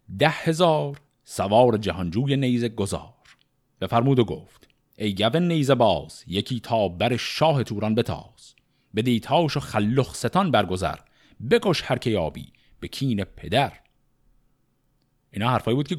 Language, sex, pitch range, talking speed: Persian, male, 100-140 Hz, 130 wpm